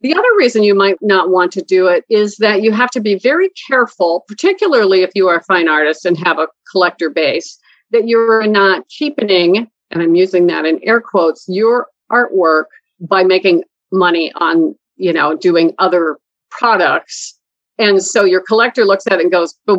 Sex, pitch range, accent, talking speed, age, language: female, 175-225 Hz, American, 190 wpm, 50-69, English